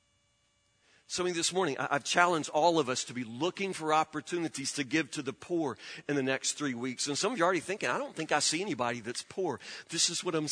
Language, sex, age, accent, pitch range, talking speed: English, male, 40-59, American, 130-180 Hz, 240 wpm